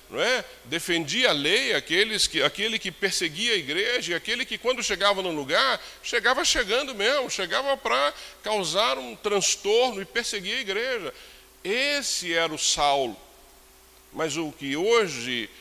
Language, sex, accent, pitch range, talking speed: Portuguese, male, Brazilian, 135-210 Hz, 145 wpm